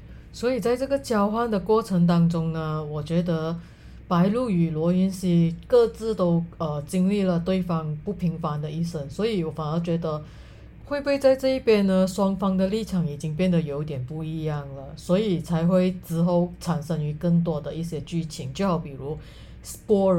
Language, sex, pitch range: Chinese, female, 160-200 Hz